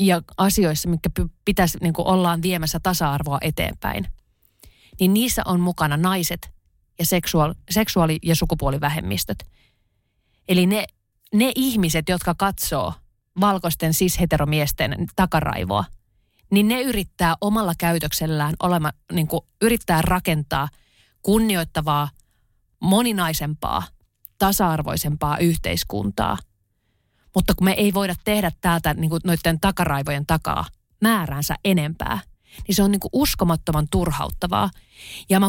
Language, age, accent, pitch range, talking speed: Finnish, 30-49, native, 145-185 Hz, 110 wpm